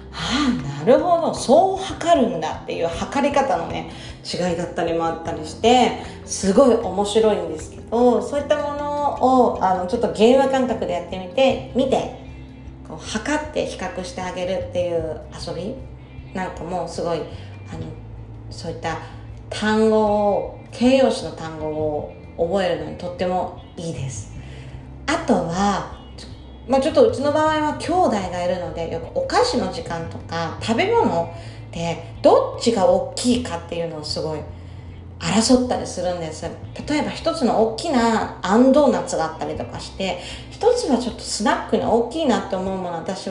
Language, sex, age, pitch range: Japanese, female, 40-59, 165-270 Hz